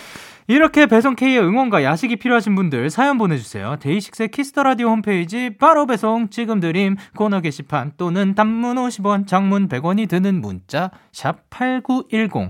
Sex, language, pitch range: male, Korean, 140-230 Hz